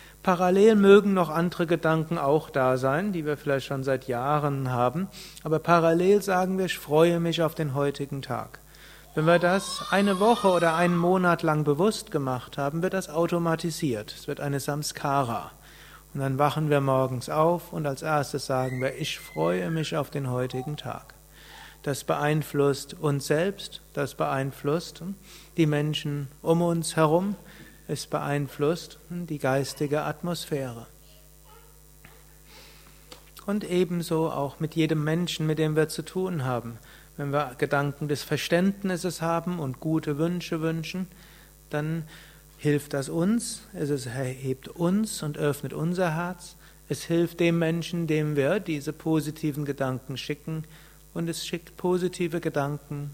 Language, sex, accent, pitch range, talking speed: German, male, German, 145-170 Hz, 145 wpm